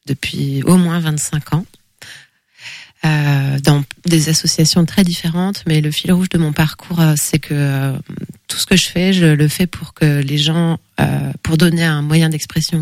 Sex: female